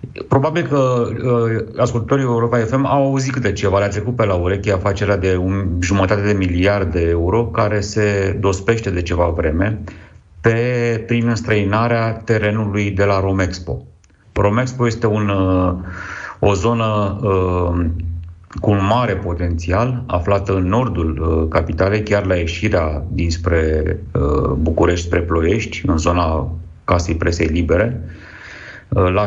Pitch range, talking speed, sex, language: 90-115 Hz, 115 wpm, male, Romanian